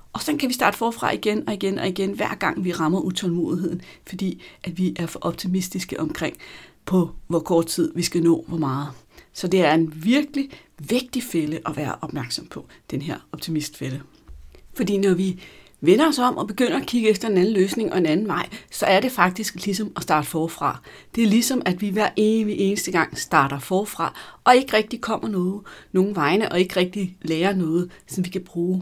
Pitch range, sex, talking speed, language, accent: 165-200 Hz, female, 205 wpm, Danish, native